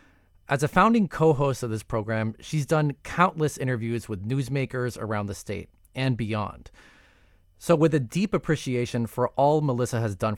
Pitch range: 105-145 Hz